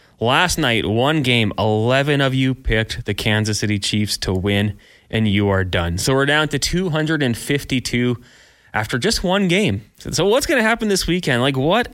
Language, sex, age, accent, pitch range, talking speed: English, male, 20-39, American, 105-135 Hz, 180 wpm